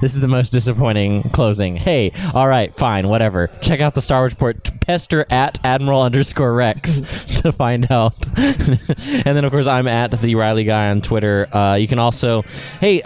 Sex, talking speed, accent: male, 190 wpm, American